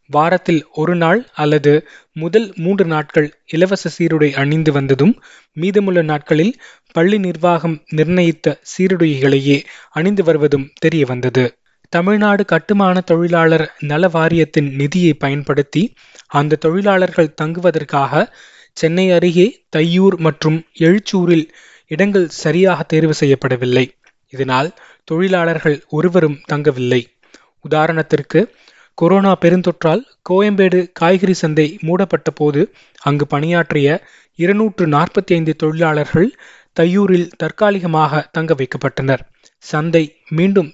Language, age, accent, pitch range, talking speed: Tamil, 20-39, native, 150-180 Hz, 90 wpm